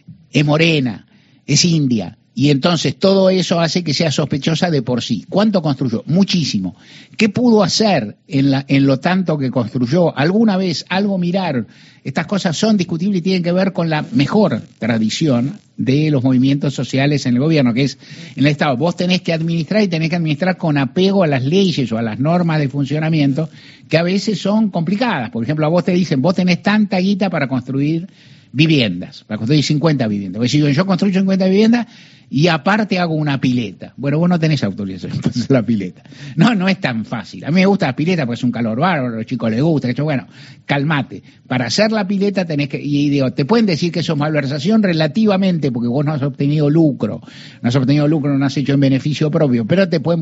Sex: male